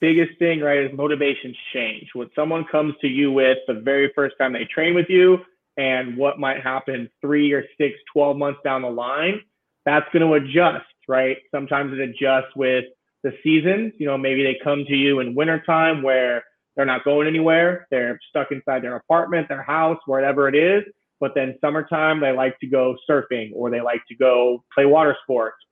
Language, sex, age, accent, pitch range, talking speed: English, male, 30-49, American, 130-160 Hz, 195 wpm